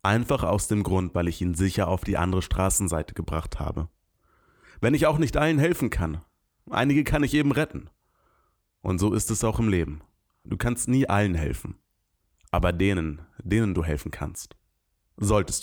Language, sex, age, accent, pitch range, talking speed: German, male, 30-49, German, 85-110 Hz, 175 wpm